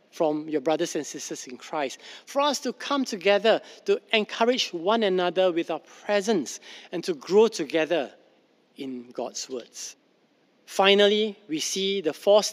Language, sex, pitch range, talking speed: English, male, 170-230 Hz, 150 wpm